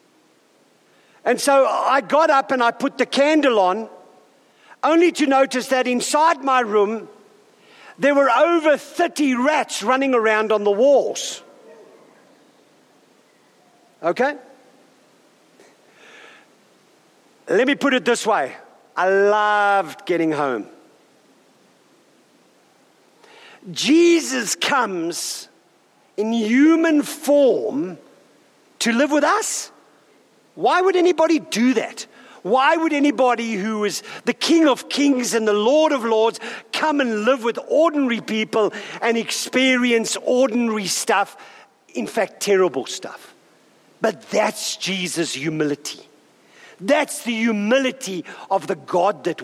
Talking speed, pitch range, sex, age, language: 110 wpm, 215-295 Hz, male, 50-69, English